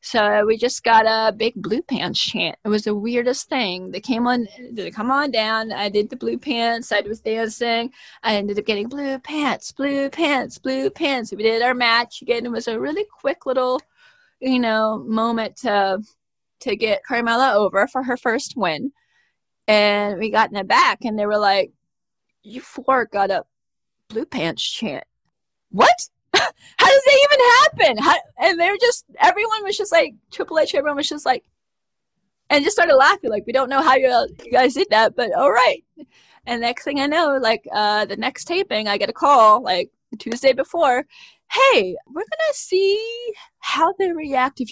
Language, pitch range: English, 220-290 Hz